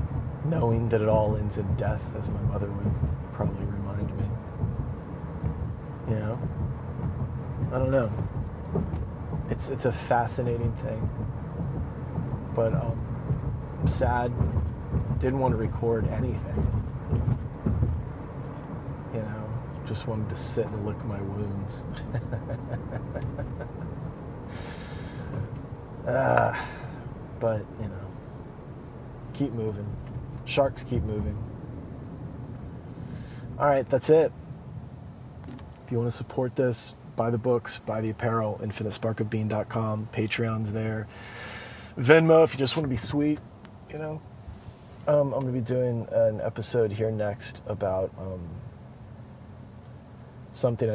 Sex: male